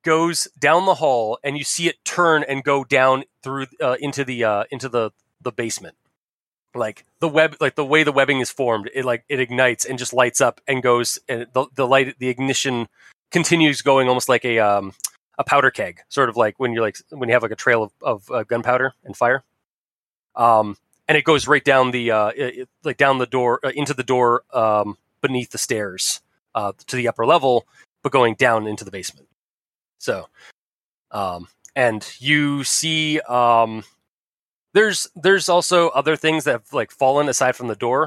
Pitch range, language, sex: 120-145 Hz, English, male